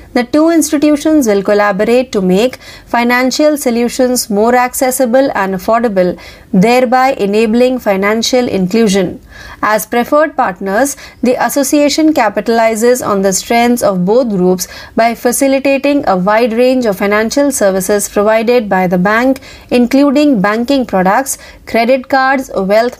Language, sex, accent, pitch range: Marathi, female, native, 205-270 Hz